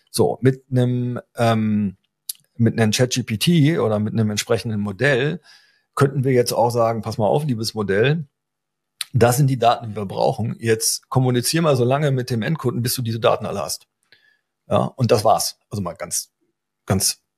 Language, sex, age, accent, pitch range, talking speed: German, male, 40-59, German, 105-125 Hz, 175 wpm